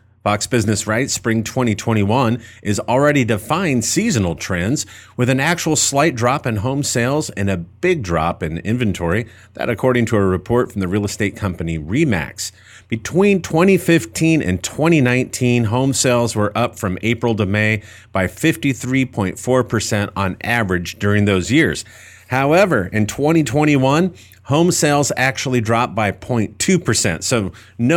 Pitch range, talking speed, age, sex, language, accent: 105-140 Hz, 140 wpm, 40-59, male, English, American